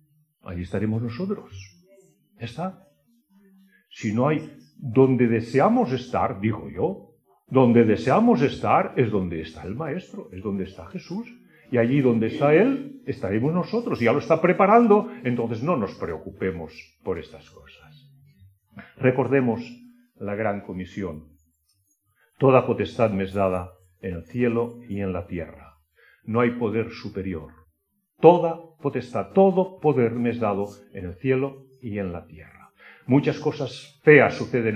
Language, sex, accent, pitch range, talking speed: Spanish, male, Spanish, 95-140 Hz, 140 wpm